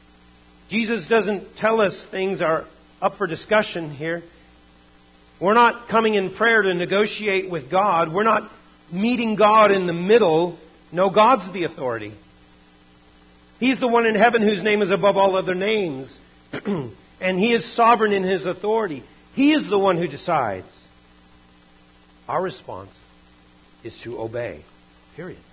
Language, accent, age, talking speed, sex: English, American, 50-69, 145 wpm, male